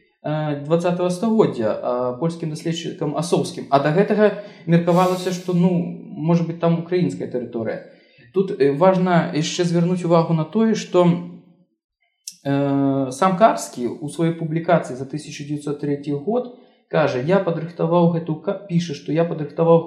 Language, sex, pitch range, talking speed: Russian, male, 140-185 Hz, 120 wpm